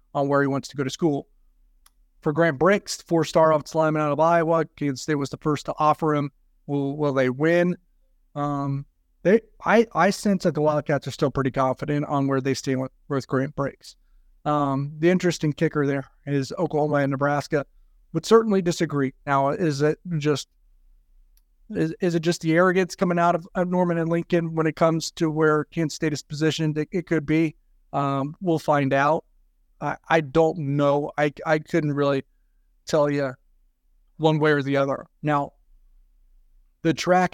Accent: American